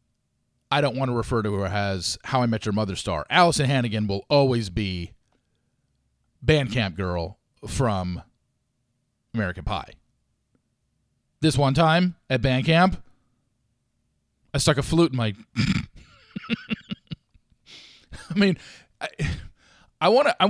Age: 40-59